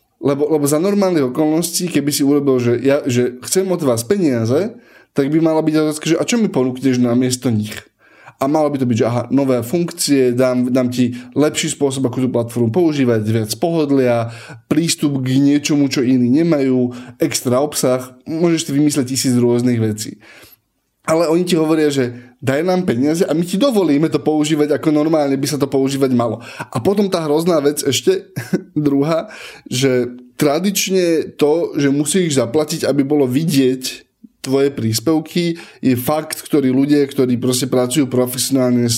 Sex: male